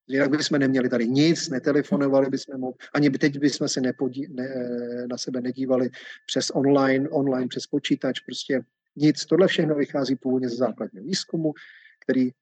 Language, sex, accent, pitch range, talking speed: Czech, male, native, 130-160 Hz, 160 wpm